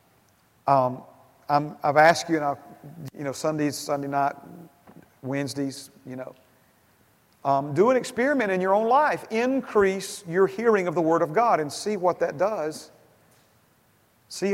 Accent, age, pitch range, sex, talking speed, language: American, 40-59, 135-180 Hz, male, 155 wpm, English